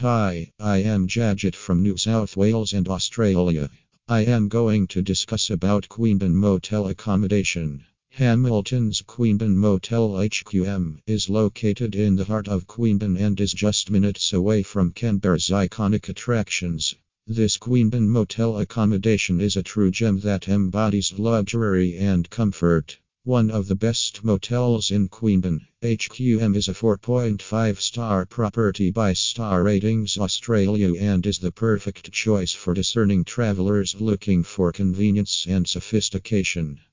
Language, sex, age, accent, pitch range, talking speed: English, male, 50-69, American, 95-110 Hz, 130 wpm